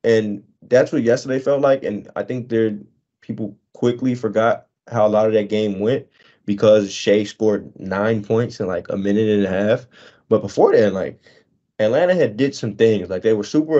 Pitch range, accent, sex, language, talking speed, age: 100-135 Hz, American, male, English, 195 wpm, 20-39